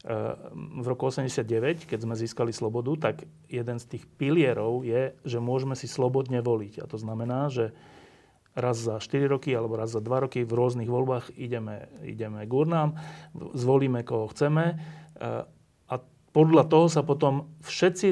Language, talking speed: Slovak, 150 wpm